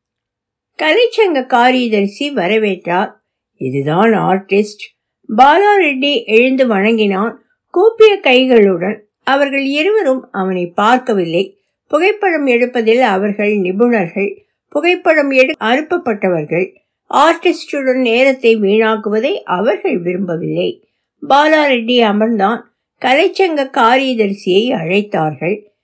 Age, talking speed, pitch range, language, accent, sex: 60-79, 50 wpm, 185-255 Hz, Tamil, native, female